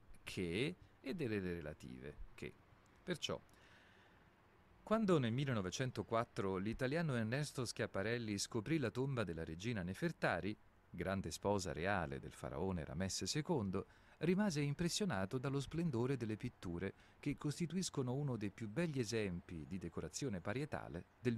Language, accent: Italian, native